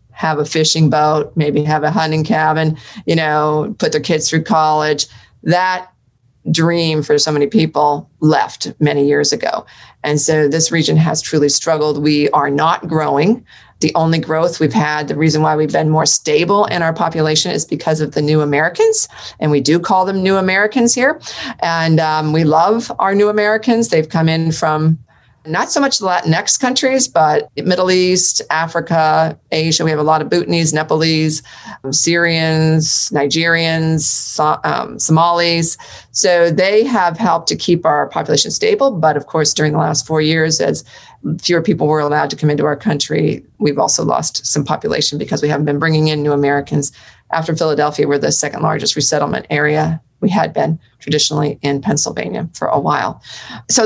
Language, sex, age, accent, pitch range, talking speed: English, female, 40-59, American, 150-170 Hz, 175 wpm